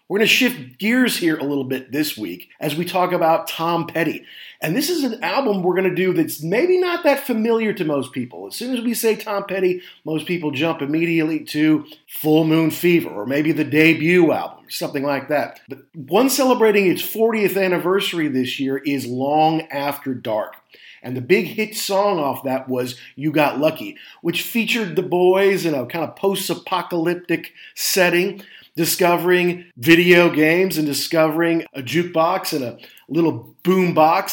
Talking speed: 180 wpm